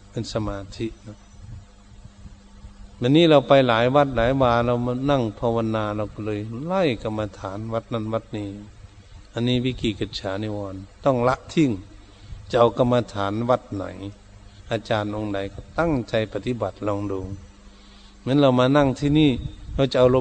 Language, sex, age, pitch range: Thai, male, 60-79, 100-125 Hz